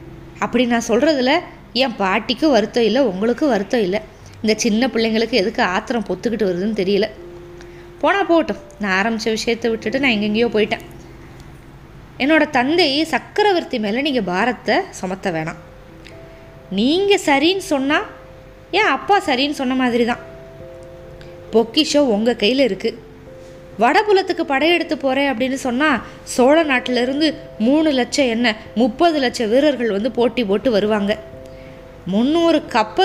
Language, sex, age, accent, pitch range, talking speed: Tamil, female, 20-39, native, 210-280 Hz, 115 wpm